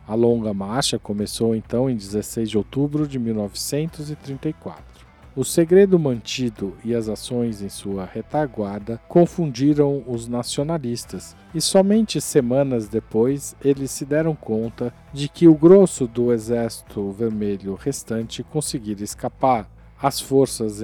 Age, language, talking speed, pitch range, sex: 50-69, Portuguese, 125 wpm, 110-140 Hz, male